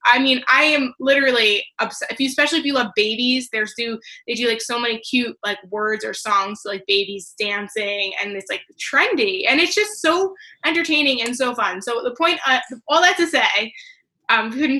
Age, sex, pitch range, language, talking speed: 20-39, female, 205-270 Hz, English, 205 wpm